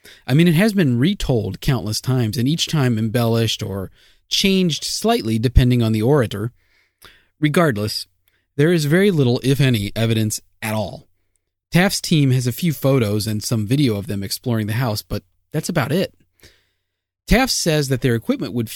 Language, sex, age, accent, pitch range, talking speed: English, male, 30-49, American, 105-170 Hz, 170 wpm